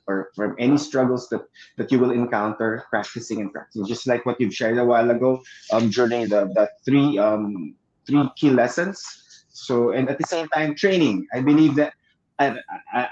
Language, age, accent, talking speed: English, 20-39, Filipino, 180 wpm